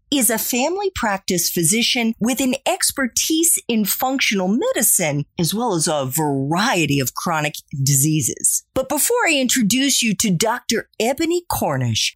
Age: 40-59